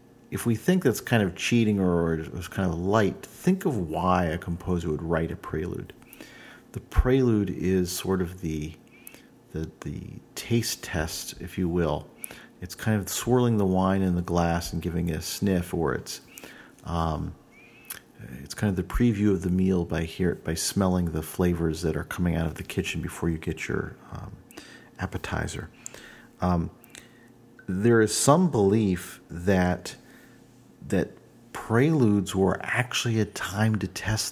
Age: 40-59